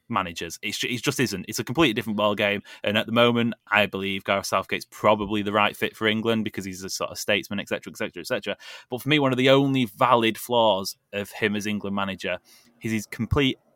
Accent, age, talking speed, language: British, 20-39, 225 wpm, English